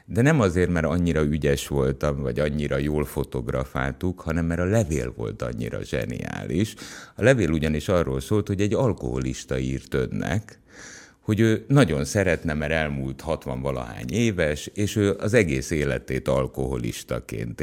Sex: male